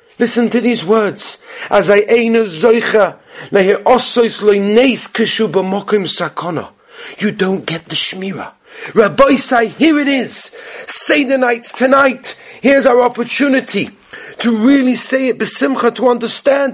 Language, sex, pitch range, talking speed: English, male, 225-275 Hz, 105 wpm